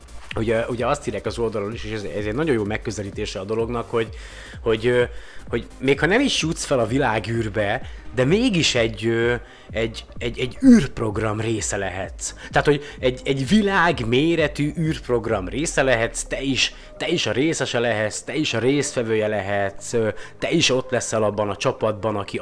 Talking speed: 170 wpm